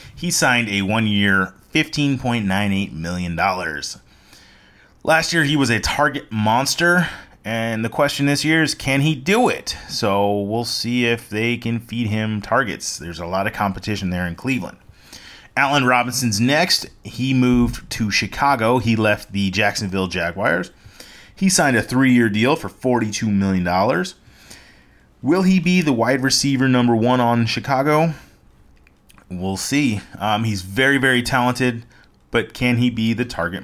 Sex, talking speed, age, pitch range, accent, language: male, 150 wpm, 30-49, 105-140 Hz, American, English